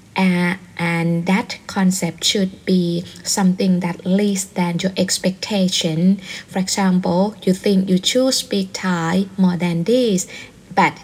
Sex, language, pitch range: female, Thai, 175-200 Hz